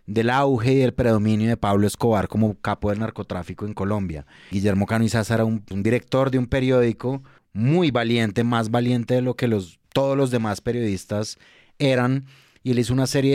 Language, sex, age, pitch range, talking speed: Spanish, male, 30-49, 105-125 Hz, 185 wpm